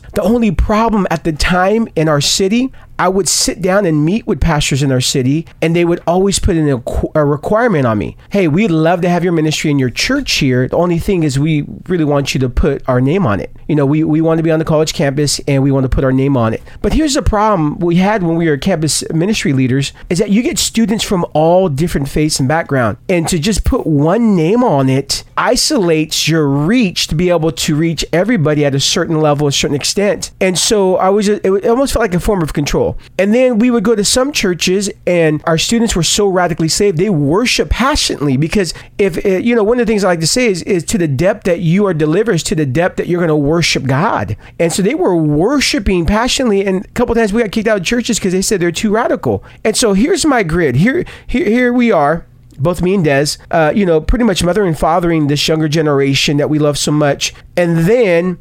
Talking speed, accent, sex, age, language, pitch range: 245 wpm, American, male, 40-59, English, 150-210 Hz